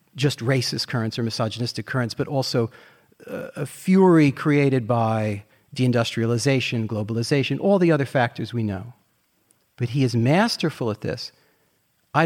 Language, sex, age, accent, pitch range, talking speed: English, male, 40-59, American, 135-195 Hz, 135 wpm